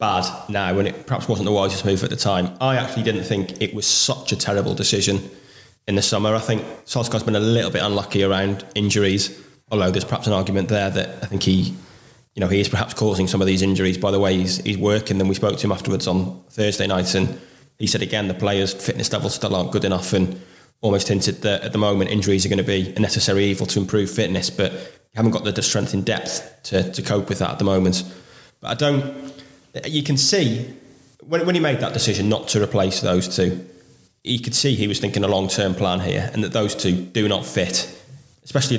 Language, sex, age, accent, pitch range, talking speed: English, male, 20-39, British, 95-125 Hz, 235 wpm